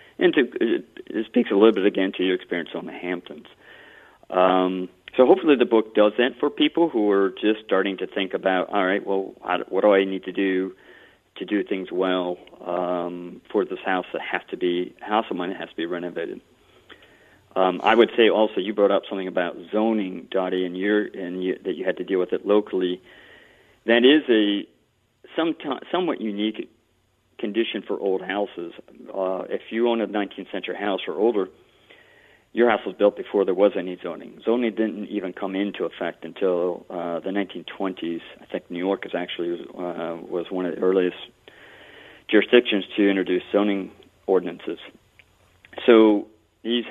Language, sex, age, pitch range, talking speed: English, male, 50-69, 90-110 Hz, 175 wpm